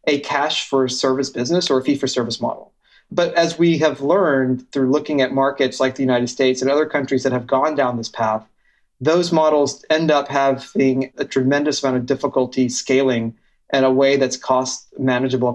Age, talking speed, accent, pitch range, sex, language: 30-49, 175 wpm, American, 125-145 Hz, male, English